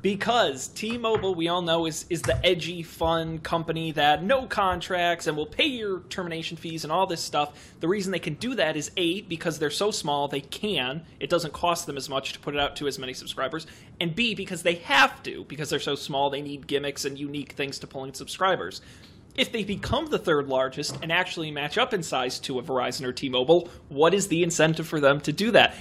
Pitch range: 145-185 Hz